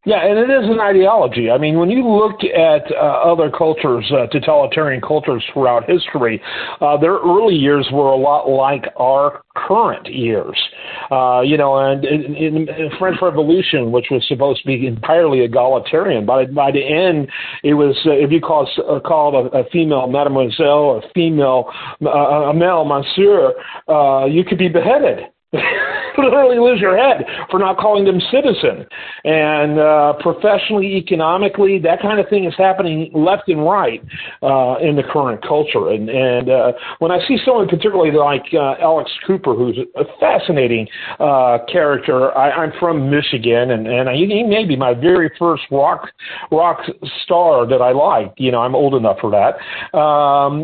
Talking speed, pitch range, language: 170 wpm, 135-190 Hz, English